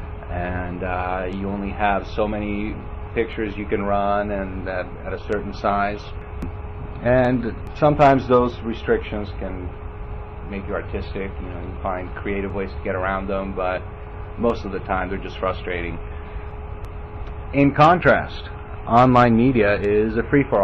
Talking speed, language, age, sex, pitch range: 150 wpm, English, 30-49, male, 85-105 Hz